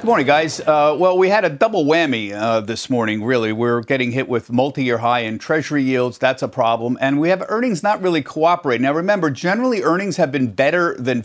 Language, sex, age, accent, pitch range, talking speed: English, male, 50-69, American, 115-145 Hz, 220 wpm